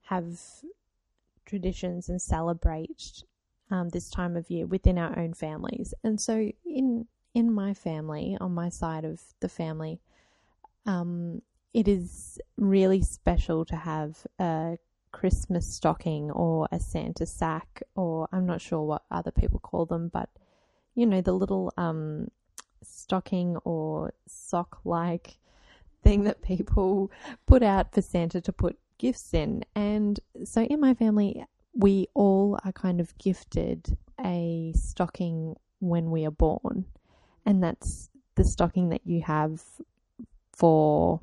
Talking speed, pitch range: 135 wpm, 160-195 Hz